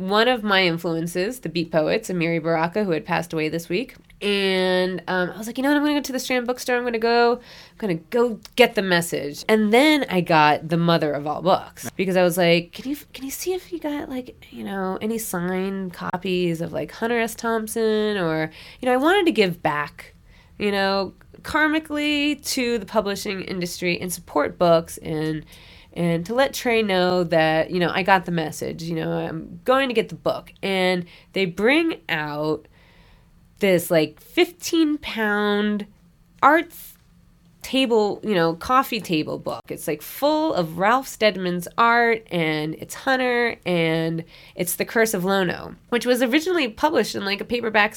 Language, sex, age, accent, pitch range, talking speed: English, female, 20-39, American, 170-235 Hz, 190 wpm